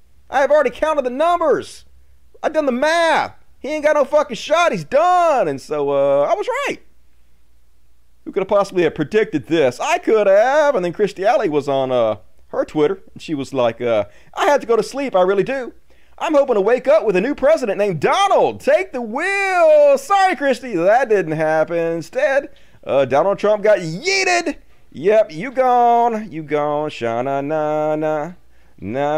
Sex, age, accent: male, 40-59, American